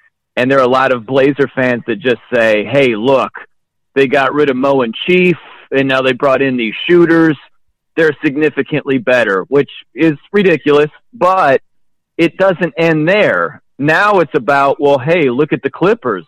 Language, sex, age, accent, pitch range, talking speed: English, male, 40-59, American, 130-160 Hz, 175 wpm